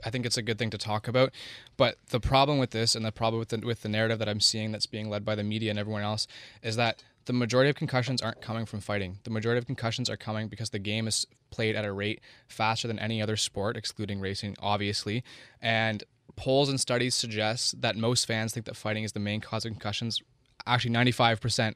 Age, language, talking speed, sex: 20-39, English, 230 wpm, male